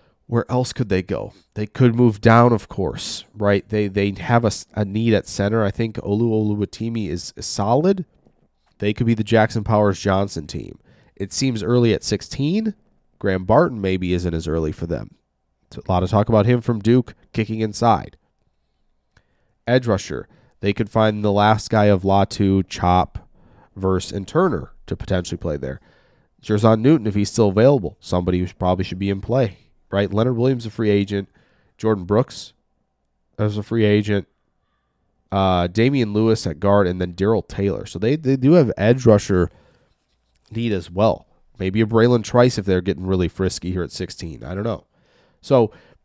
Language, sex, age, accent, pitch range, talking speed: English, male, 30-49, American, 95-115 Hz, 175 wpm